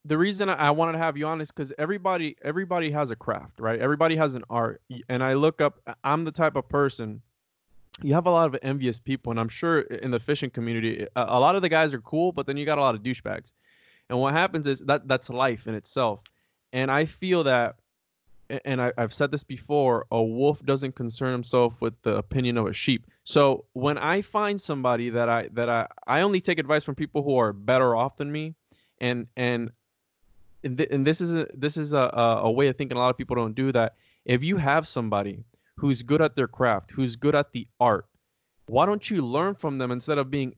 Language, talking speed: English, 220 wpm